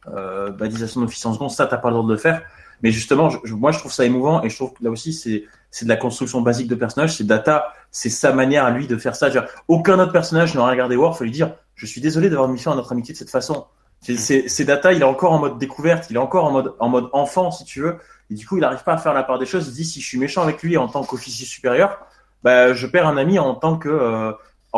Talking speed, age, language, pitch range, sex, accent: 300 wpm, 20-39, French, 125-165 Hz, male, French